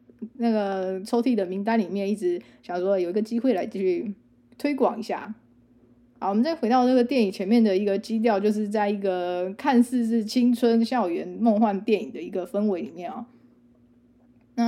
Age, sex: 20-39, female